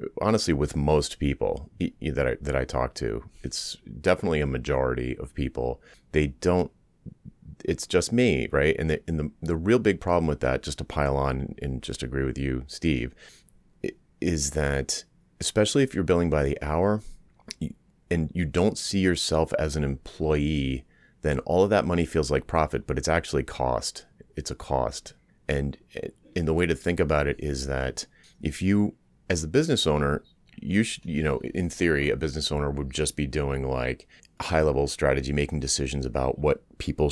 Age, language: 30-49, English